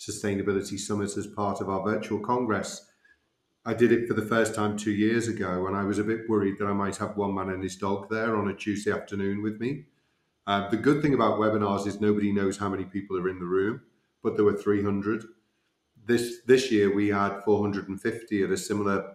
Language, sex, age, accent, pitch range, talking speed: English, male, 30-49, British, 100-110 Hz, 215 wpm